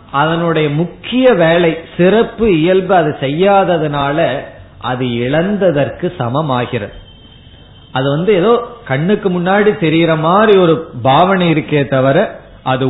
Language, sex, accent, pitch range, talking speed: Tamil, male, native, 130-180 Hz, 105 wpm